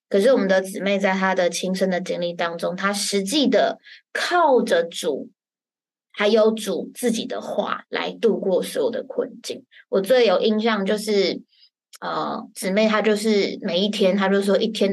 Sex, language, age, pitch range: female, Chinese, 20-39, 190-245 Hz